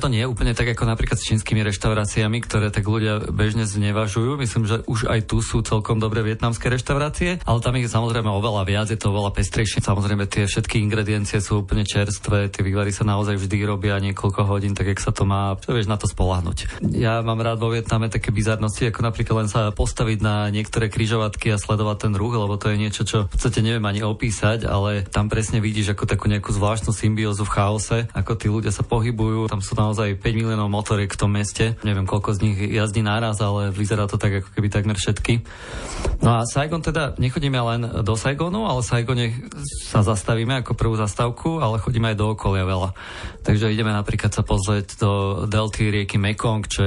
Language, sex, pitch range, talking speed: Slovak, male, 105-115 Hz, 205 wpm